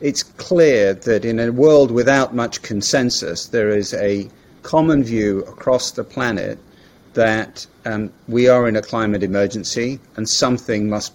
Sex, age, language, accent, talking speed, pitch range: male, 40-59, English, British, 150 wpm, 105-130 Hz